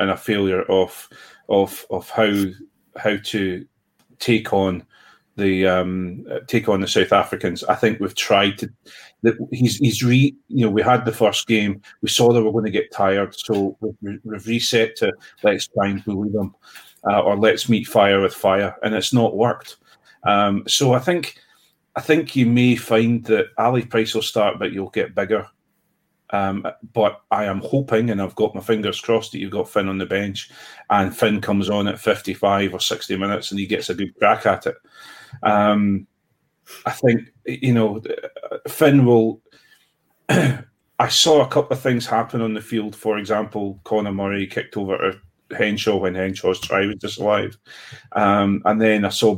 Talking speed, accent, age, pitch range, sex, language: 185 wpm, British, 30-49, 100-115 Hz, male, English